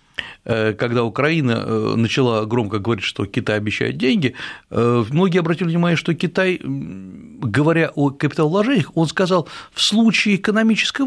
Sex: male